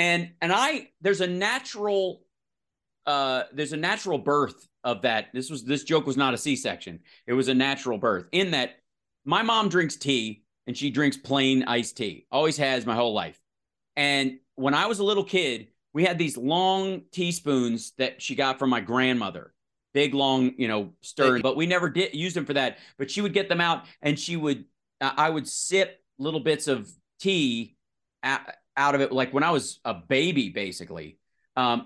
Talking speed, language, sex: 195 wpm, English, male